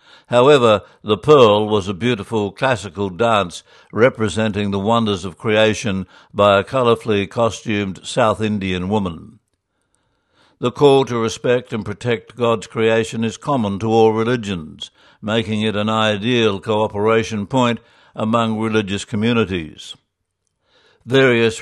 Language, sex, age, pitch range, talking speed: English, male, 60-79, 105-120 Hz, 120 wpm